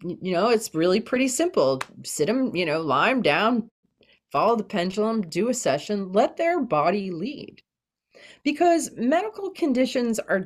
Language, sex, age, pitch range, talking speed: English, female, 30-49, 165-260 Hz, 155 wpm